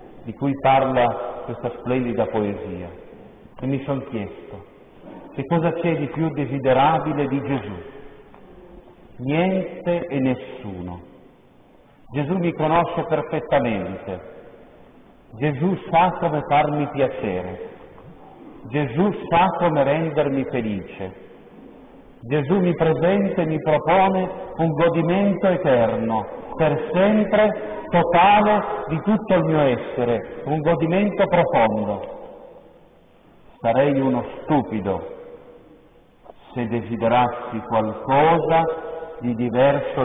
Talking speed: 95 wpm